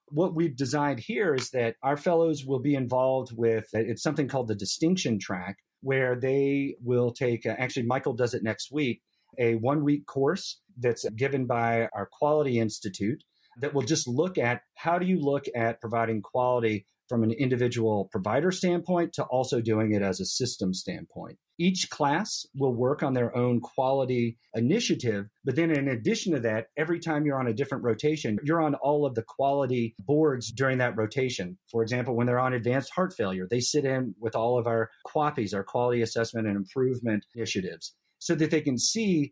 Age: 40-59